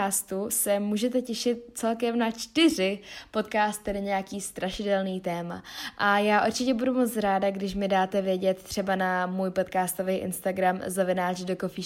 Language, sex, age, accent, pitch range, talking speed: Czech, female, 20-39, native, 190-215 Hz, 140 wpm